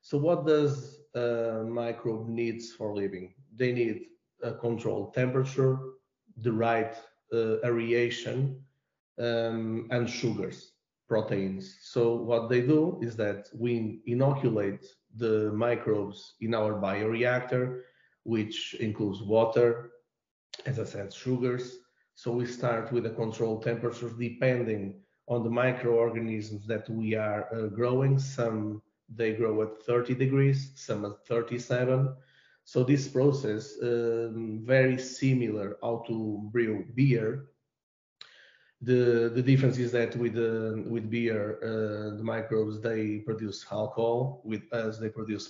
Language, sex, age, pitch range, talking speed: Italian, male, 40-59, 110-125 Hz, 125 wpm